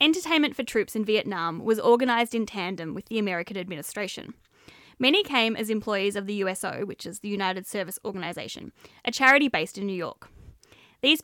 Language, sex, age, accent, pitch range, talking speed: English, female, 10-29, Australian, 205-250 Hz, 175 wpm